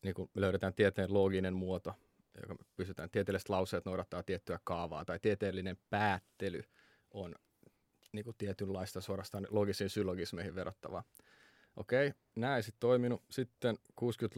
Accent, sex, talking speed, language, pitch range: native, male, 130 wpm, Finnish, 95-110 Hz